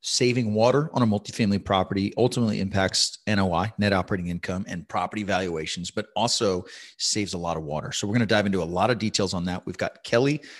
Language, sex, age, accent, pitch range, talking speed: English, male, 30-49, American, 100-120 Hz, 210 wpm